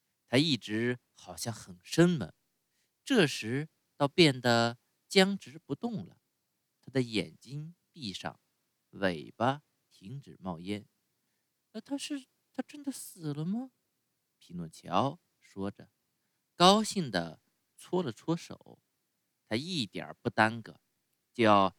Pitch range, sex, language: 110-175 Hz, male, Chinese